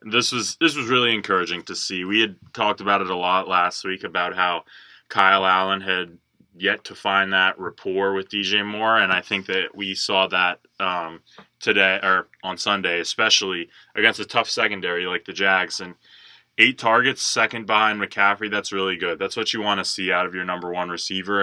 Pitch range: 95-105 Hz